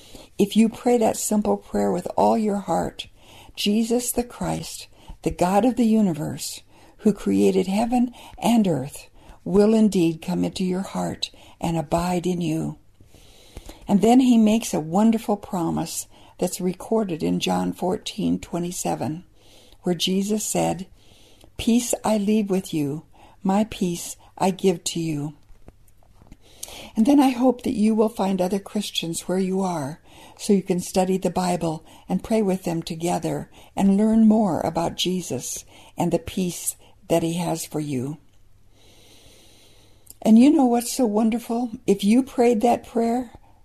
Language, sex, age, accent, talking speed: English, female, 60-79, American, 150 wpm